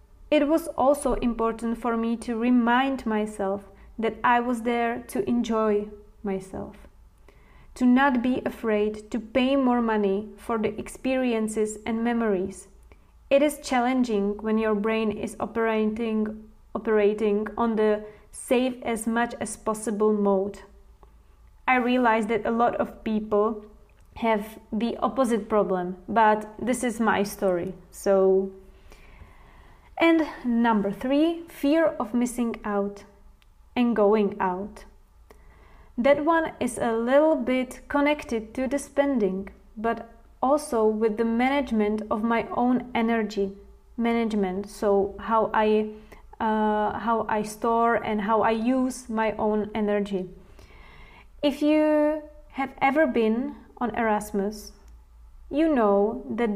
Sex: female